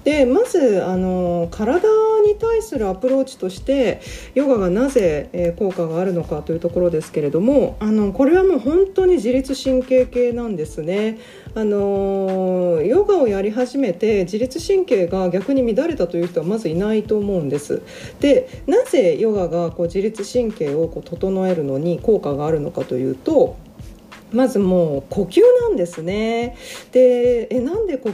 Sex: female